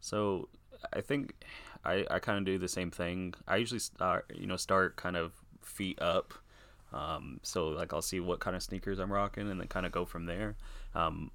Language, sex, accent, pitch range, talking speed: English, male, American, 85-95 Hz, 210 wpm